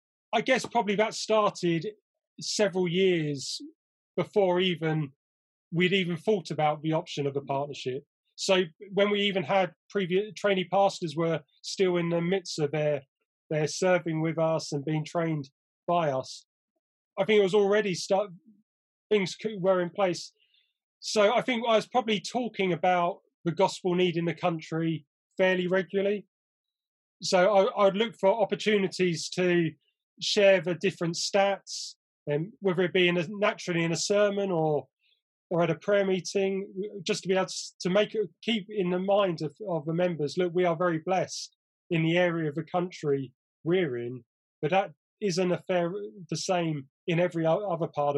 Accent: British